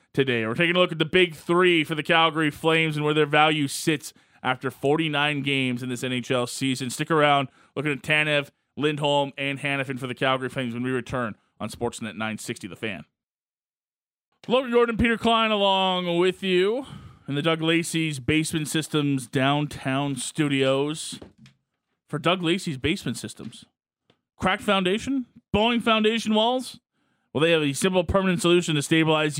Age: 20-39